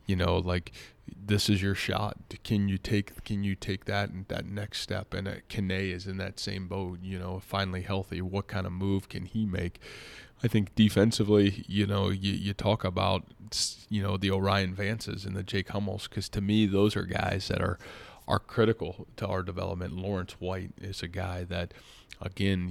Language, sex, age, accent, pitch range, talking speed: English, male, 20-39, American, 95-100 Hz, 200 wpm